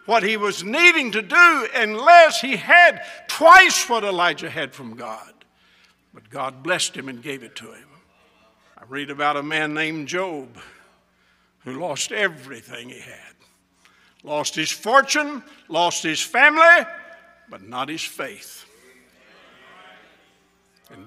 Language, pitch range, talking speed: English, 140-215 Hz, 135 wpm